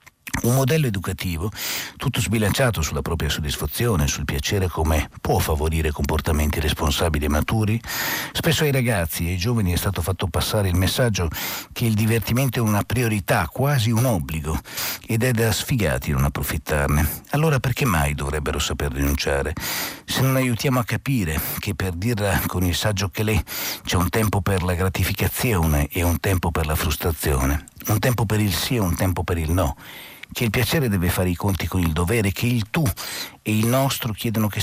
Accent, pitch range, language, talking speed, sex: native, 80-110 Hz, Italian, 180 wpm, male